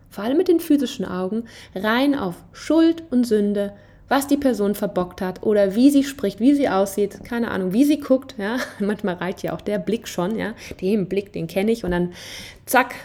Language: German